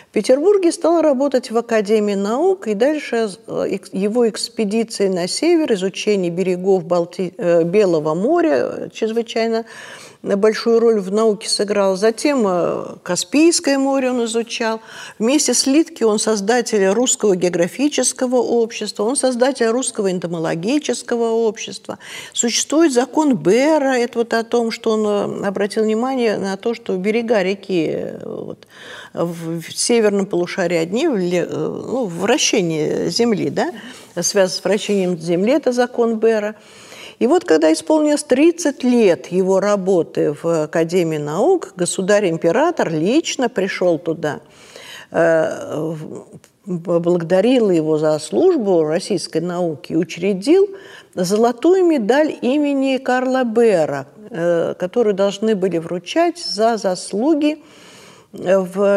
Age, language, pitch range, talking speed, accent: 50-69, Russian, 185-250 Hz, 105 wpm, native